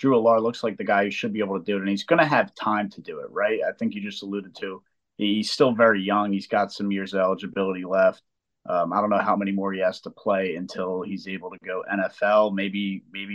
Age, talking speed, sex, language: 30-49, 265 wpm, male, English